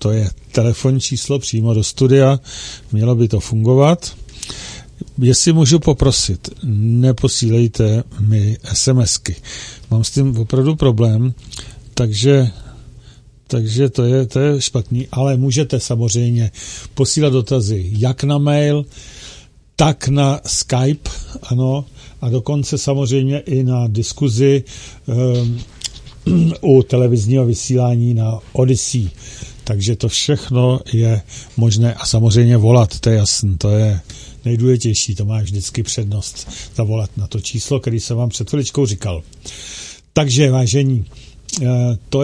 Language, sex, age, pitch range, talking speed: Czech, male, 50-69, 115-135 Hz, 120 wpm